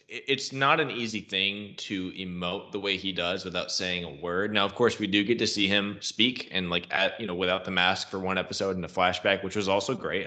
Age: 20-39